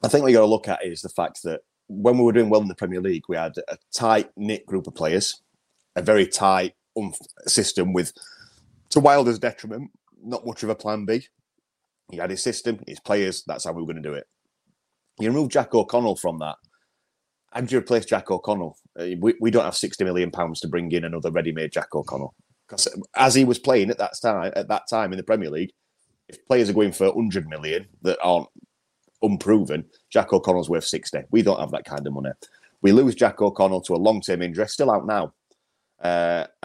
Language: English